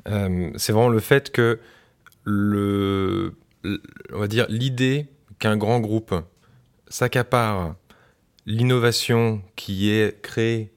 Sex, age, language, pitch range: male, 20-39, French, 105-125 Hz